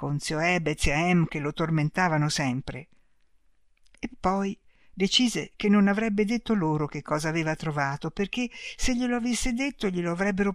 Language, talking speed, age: Italian, 155 wpm, 60-79